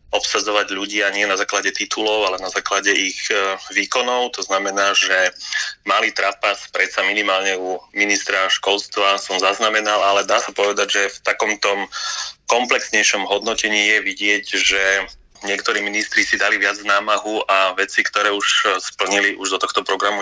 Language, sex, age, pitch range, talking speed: Slovak, male, 20-39, 95-105 Hz, 150 wpm